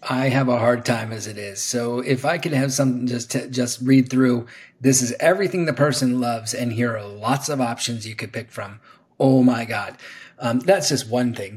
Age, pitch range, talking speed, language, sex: 30-49, 120-135 Hz, 225 wpm, English, male